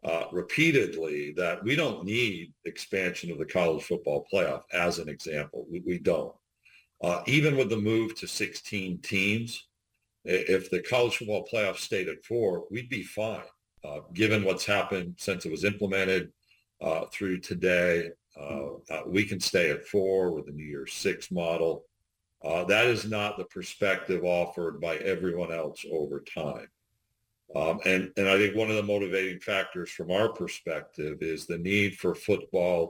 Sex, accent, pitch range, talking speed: male, American, 85-105 Hz, 165 wpm